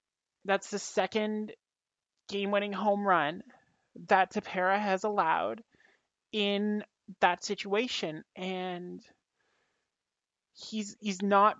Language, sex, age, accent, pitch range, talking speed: English, male, 30-49, American, 180-205 Hz, 95 wpm